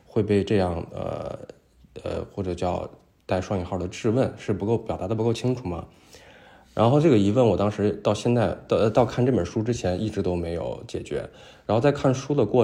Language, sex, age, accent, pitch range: Chinese, male, 20-39, native, 90-110 Hz